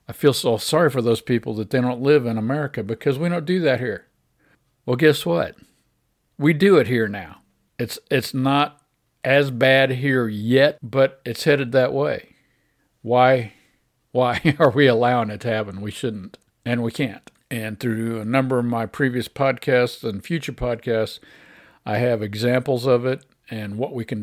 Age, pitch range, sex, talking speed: 50-69, 115-135 Hz, male, 180 wpm